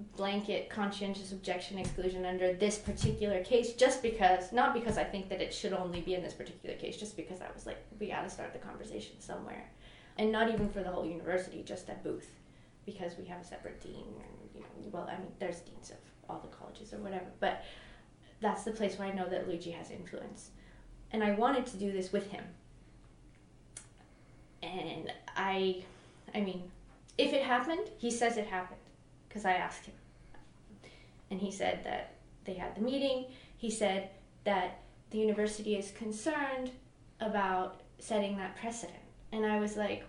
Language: English